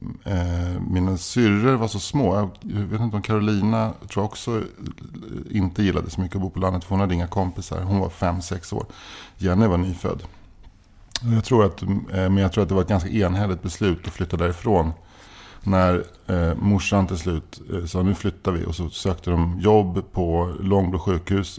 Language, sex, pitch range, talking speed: English, male, 85-105 Hz, 185 wpm